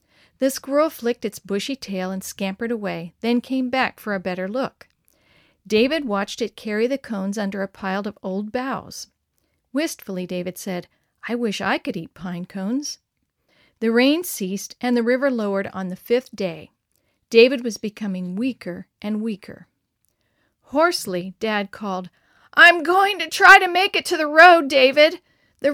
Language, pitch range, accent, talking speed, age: English, 195-275 Hz, American, 165 wpm, 50-69